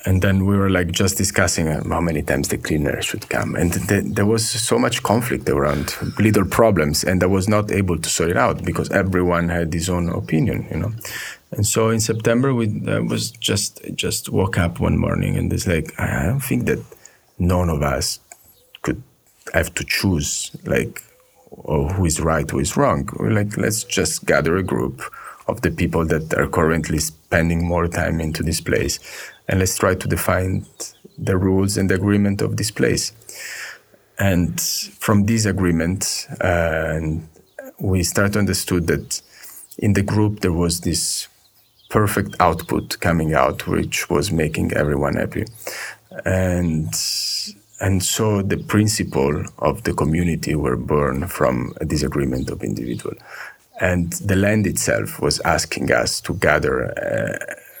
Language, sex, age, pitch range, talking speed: English, male, 30-49, 80-105 Hz, 165 wpm